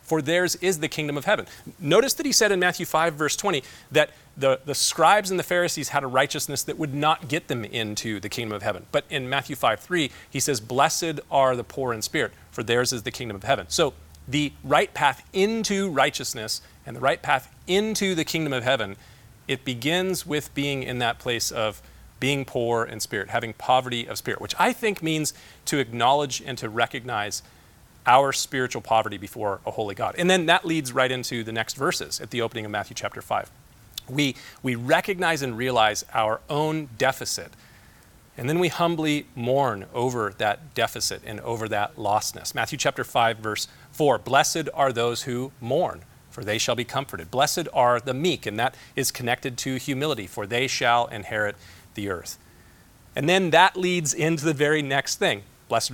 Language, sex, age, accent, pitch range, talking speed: English, male, 40-59, American, 115-155 Hz, 195 wpm